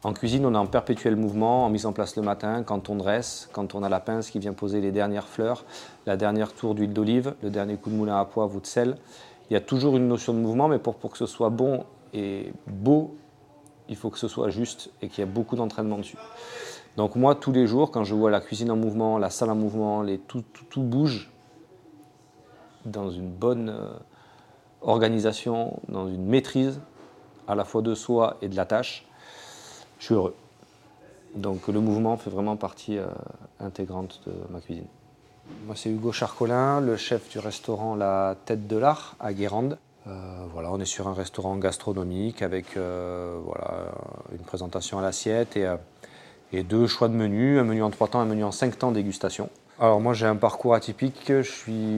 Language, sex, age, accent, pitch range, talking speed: French, male, 40-59, French, 100-120 Hz, 205 wpm